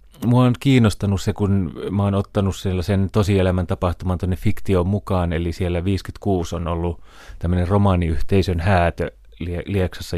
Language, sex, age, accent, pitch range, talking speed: Finnish, male, 30-49, native, 85-100 Hz, 130 wpm